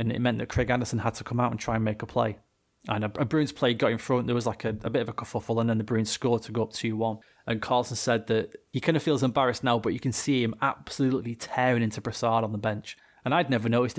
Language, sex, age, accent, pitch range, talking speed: English, male, 20-39, British, 115-135 Hz, 290 wpm